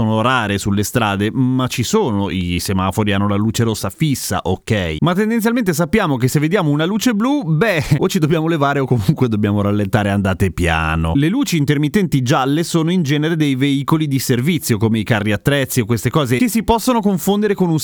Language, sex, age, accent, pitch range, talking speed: Italian, male, 30-49, native, 115-165 Hz, 195 wpm